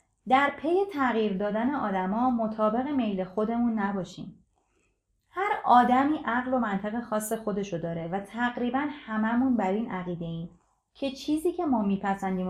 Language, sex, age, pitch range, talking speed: Persian, female, 30-49, 180-260 Hz, 140 wpm